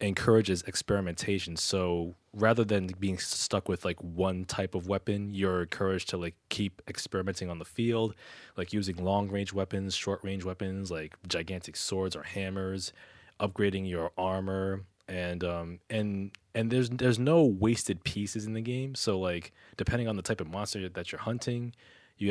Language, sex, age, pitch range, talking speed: English, male, 20-39, 90-105 Hz, 160 wpm